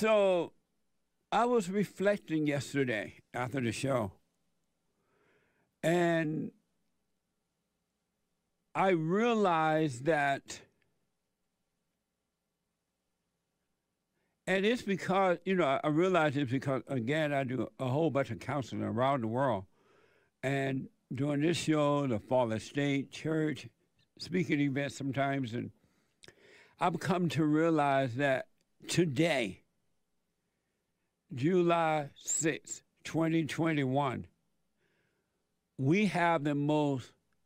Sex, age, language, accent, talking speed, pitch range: male, 60-79, English, American, 90 wpm, 135-170 Hz